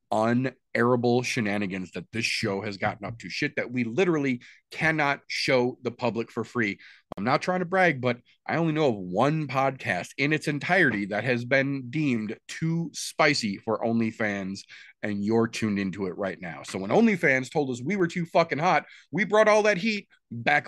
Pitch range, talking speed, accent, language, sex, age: 120-165 Hz, 190 wpm, American, English, male, 30-49